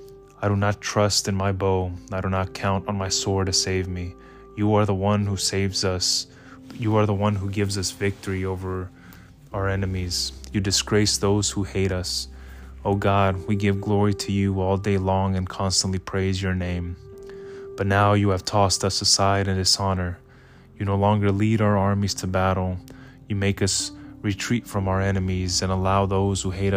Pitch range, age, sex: 95-105 Hz, 20-39, male